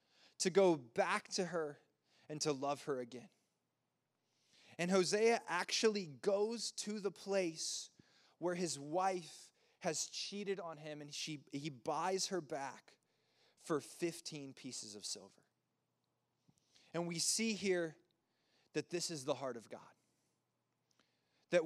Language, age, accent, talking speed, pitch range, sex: English, 20-39, American, 125 wpm, 145-180 Hz, male